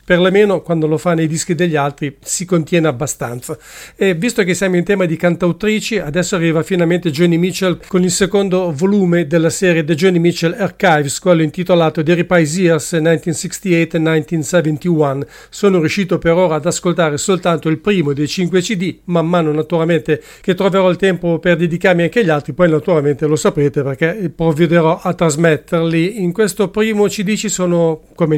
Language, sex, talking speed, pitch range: English, male, 170 wpm, 160-185 Hz